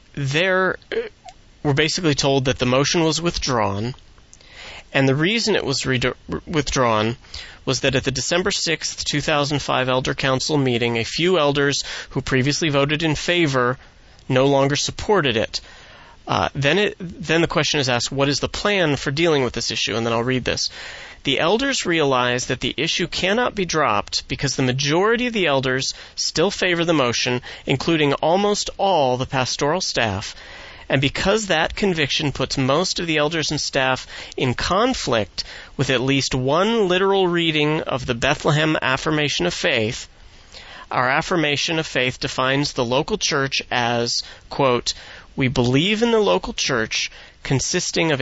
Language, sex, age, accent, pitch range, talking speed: English, male, 30-49, American, 130-165 Hz, 160 wpm